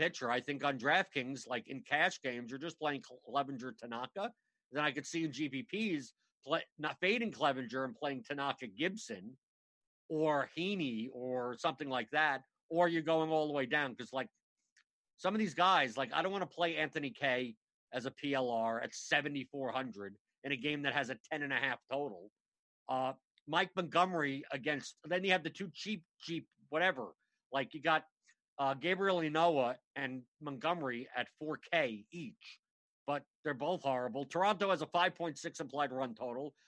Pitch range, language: 135-180 Hz, English